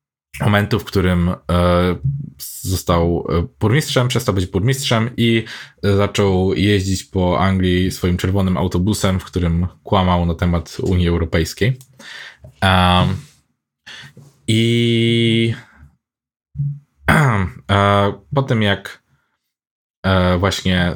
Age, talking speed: 20-39, 80 wpm